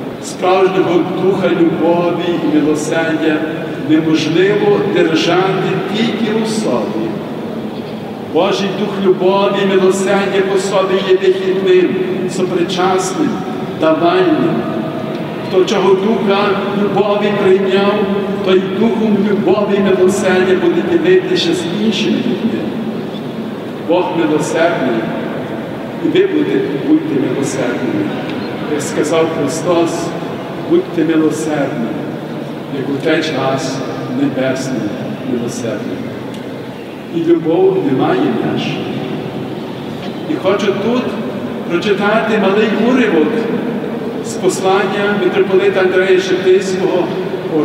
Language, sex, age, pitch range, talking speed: Ukrainian, male, 60-79, 175-200 Hz, 95 wpm